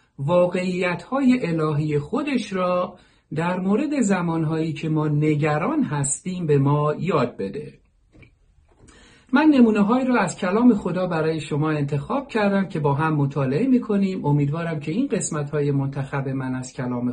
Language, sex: Persian, male